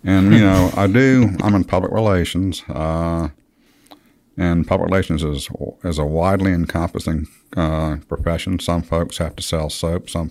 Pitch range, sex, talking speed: 75-90 Hz, male, 155 wpm